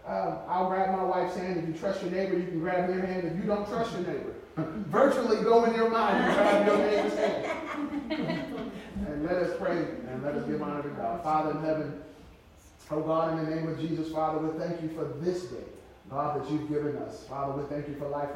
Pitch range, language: 160-200 Hz, English